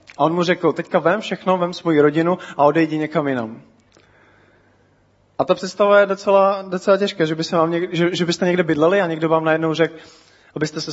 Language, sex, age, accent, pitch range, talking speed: Czech, male, 20-39, native, 140-180 Hz, 210 wpm